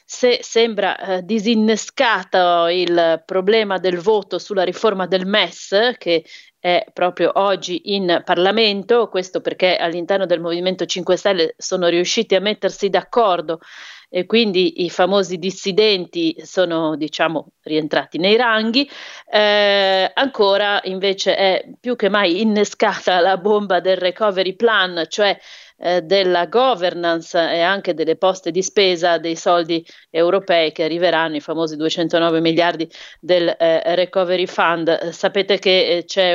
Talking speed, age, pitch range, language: 135 wpm, 30-49, 170-200 Hz, Italian